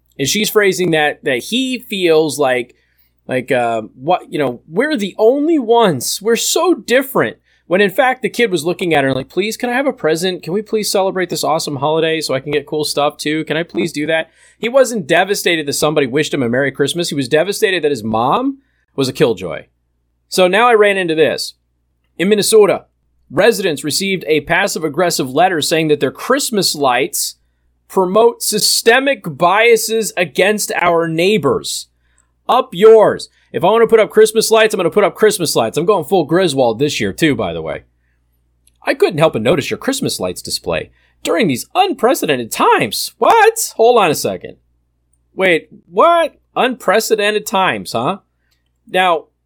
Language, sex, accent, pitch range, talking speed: English, male, American, 135-215 Hz, 185 wpm